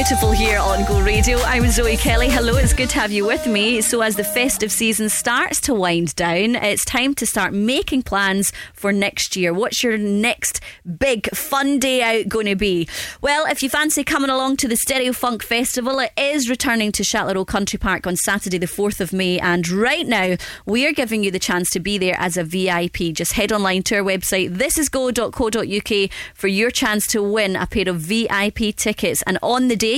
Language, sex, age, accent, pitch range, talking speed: English, female, 30-49, British, 185-245 Hz, 210 wpm